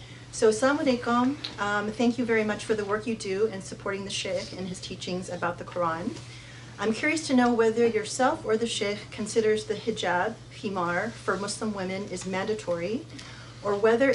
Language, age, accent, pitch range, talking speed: English, 30-49, American, 180-225 Hz, 180 wpm